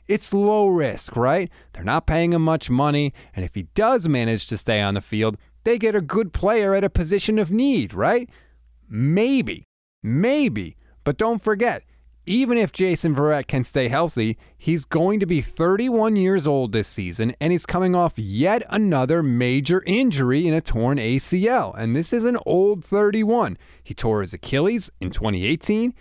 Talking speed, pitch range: 175 wpm, 130-210 Hz